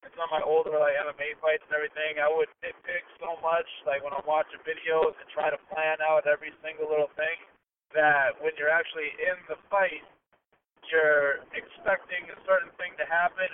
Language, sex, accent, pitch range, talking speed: English, male, American, 150-190 Hz, 180 wpm